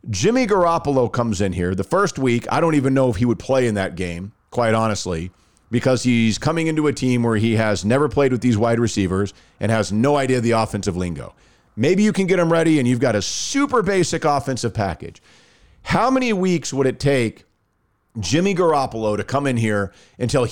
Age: 40-59